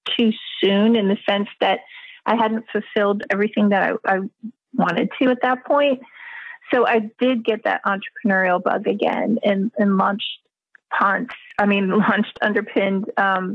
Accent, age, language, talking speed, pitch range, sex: American, 30-49, English, 155 wpm, 205-235 Hz, female